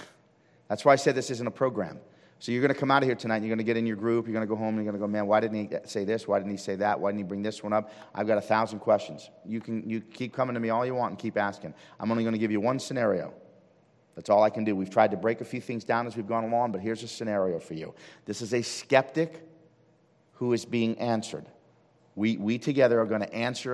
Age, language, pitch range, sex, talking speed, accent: 40-59, English, 110-155 Hz, male, 295 wpm, American